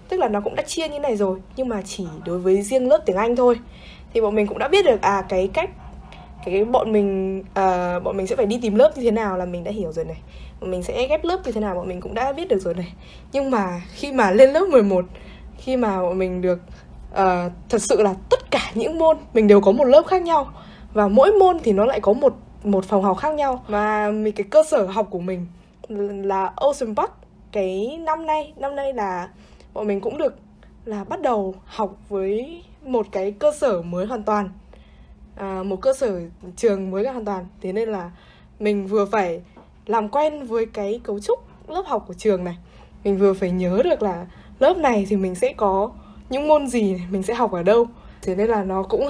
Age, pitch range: 10-29, 190-255 Hz